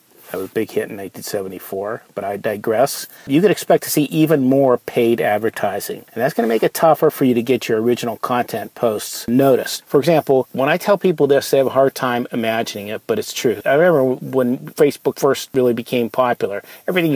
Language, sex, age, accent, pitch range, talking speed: English, male, 50-69, American, 115-150 Hz, 215 wpm